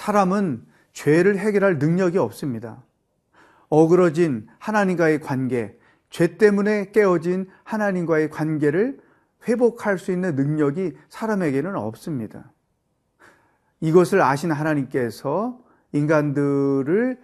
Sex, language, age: male, Korean, 40-59